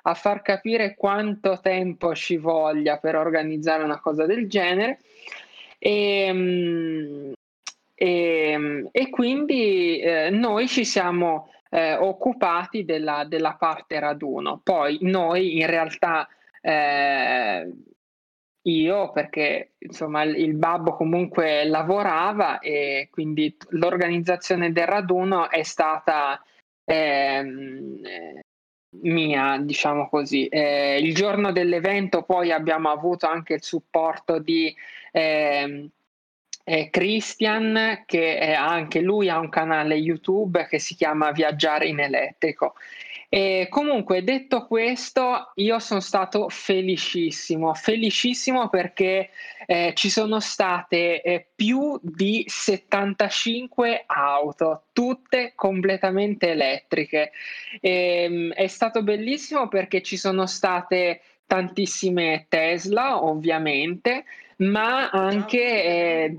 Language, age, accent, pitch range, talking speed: Italian, 20-39, native, 155-200 Hz, 100 wpm